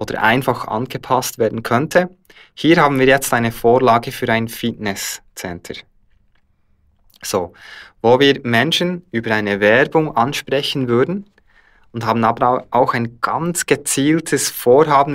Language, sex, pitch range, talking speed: German, male, 110-135 Hz, 125 wpm